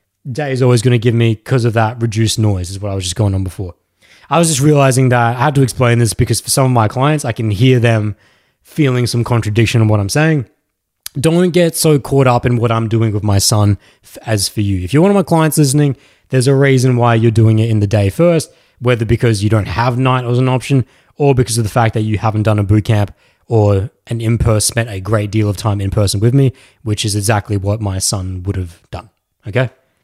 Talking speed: 250 wpm